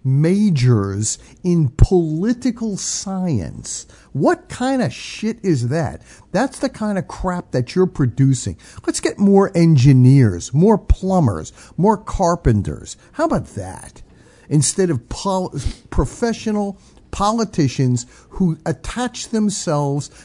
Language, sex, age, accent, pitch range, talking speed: English, male, 50-69, American, 125-205 Hz, 110 wpm